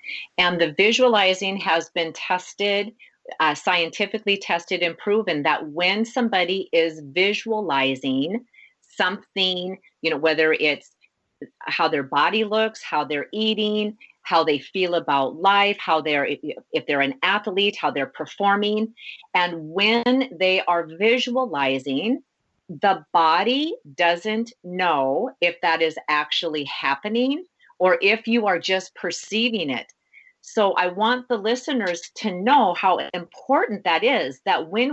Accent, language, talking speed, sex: American, English, 130 wpm, female